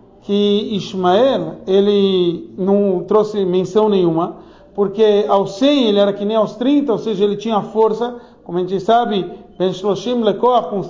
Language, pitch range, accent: Portuguese, 195-240 Hz, Brazilian